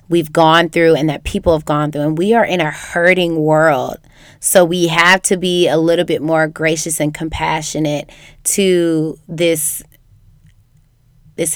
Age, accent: 20-39, American